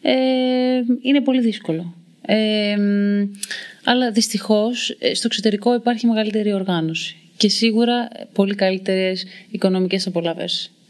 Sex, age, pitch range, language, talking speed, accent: female, 30-49, 180-230 Hz, Greek, 100 wpm, native